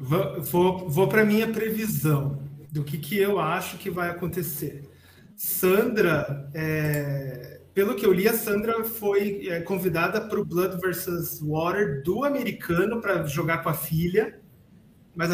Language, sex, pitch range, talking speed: Portuguese, male, 160-200 Hz, 135 wpm